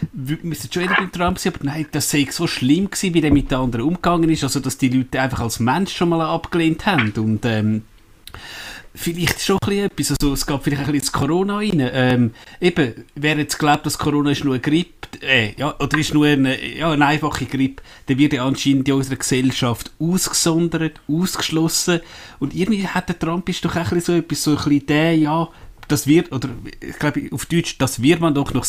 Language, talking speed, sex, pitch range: German, 220 wpm, male, 130-160 Hz